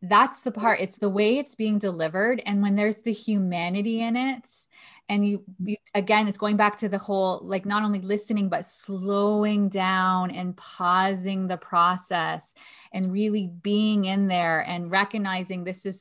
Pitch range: 185-225 Hz